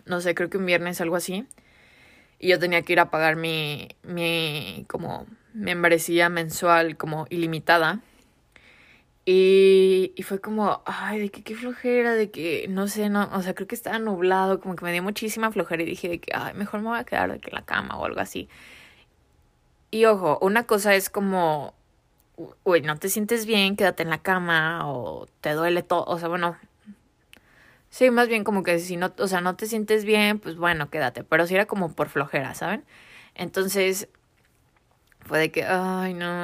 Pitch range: 165-195 Hz